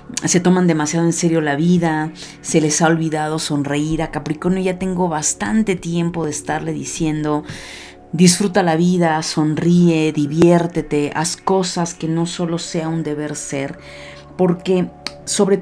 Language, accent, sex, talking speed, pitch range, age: Spanish, Mexican, female, 140 wpm, 150-180 Hz, 40-59